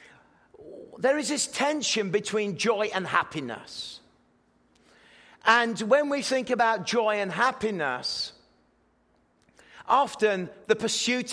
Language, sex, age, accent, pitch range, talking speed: English, male, 40-59, British, 195-235 Hz, 100 wpm